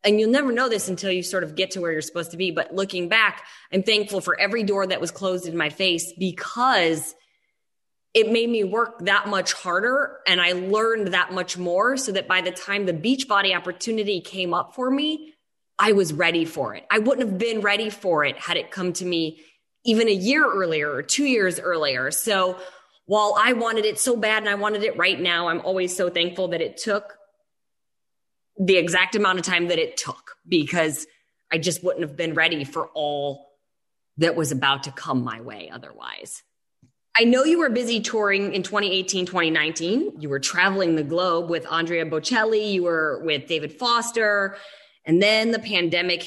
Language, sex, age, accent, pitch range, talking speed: English, female, 20-39, American, 165-215 Hz, 195 wpm